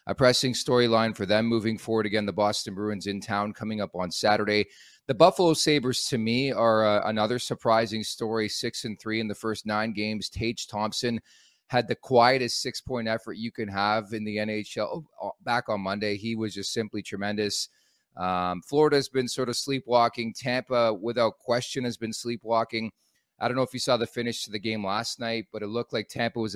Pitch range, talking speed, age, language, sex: 105-120 Hz, 195 wpm, 30-49, English, male